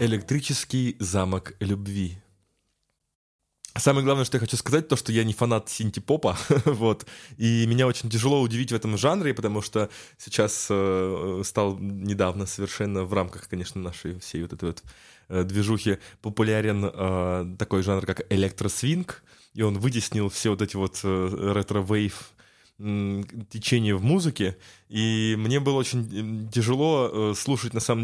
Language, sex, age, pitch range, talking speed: Russian, male, 20-39, 100-130 Hz, 135 wpm